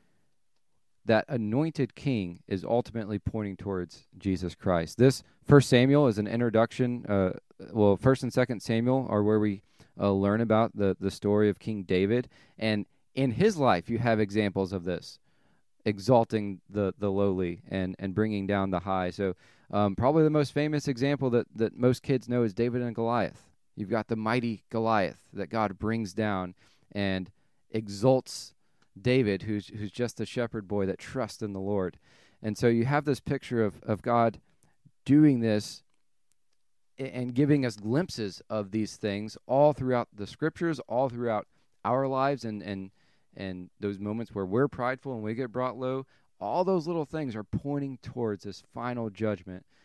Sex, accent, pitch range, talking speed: male, American, 100-125 Hz, 170 wpm